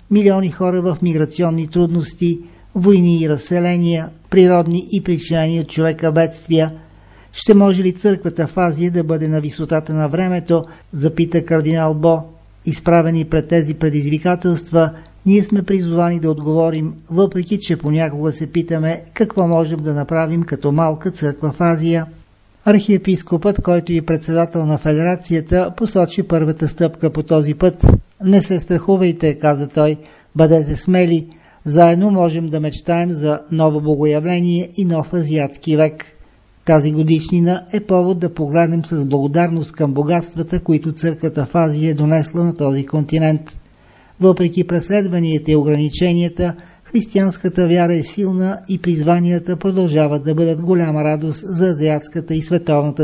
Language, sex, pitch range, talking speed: Bulgarian, male, 155-180 Hz, 135 wpm